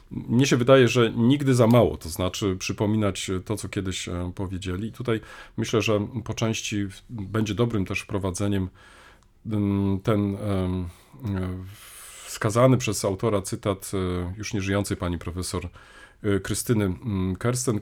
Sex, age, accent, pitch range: male, 40-59, native, 95-120 Hz